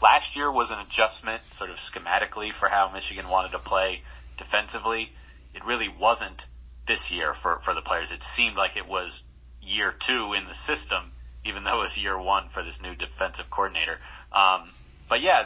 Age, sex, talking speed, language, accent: 30-49, male, 185 wpm, English, American